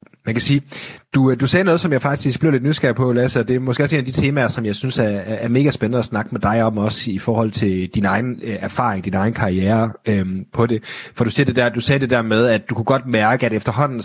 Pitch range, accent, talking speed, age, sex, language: 105-135 Hz, native, 280 wpm, 30-49, male, Danish